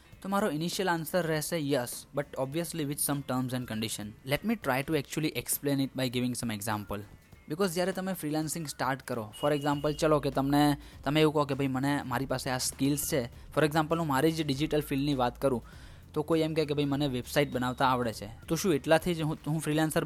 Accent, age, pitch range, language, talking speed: native, 10-29, 125-160 Hz, Gujarati, 205 wpm